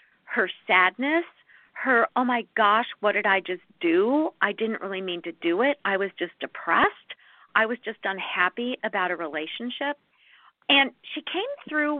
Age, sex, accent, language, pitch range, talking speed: 50-69, female, American, English, 205-285 Hz, 165 wpm